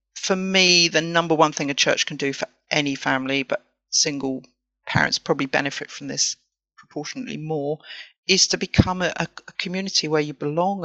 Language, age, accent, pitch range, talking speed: English, 40-59, British, 150-190 Hz, 170 wpm